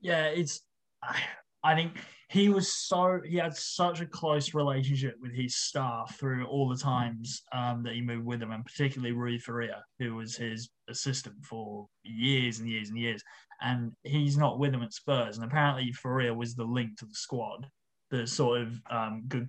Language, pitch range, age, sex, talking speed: English, 115-140 Hz, 20-39, male, 190 wpm